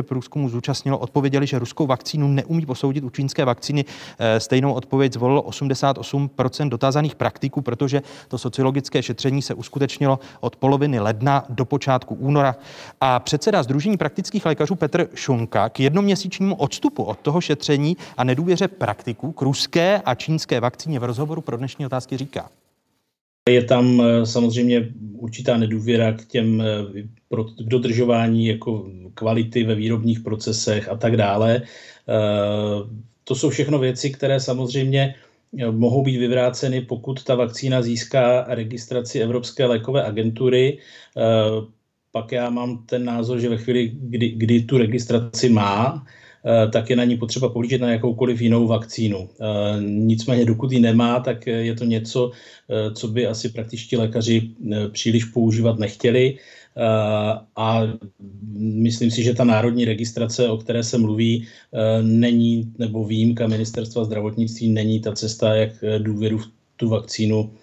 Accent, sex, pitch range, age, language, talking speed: native, male, 115-135 Hz, 30-49, Czech, 135 wpm